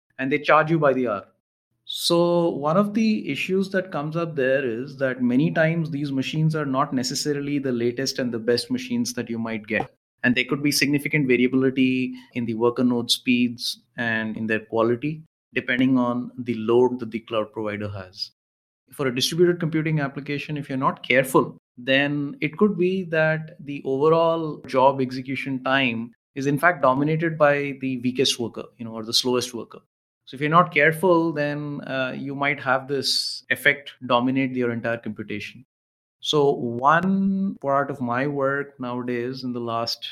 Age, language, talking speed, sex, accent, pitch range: 30-49, English, 175 wpm, male, Indian, 120-145 Hz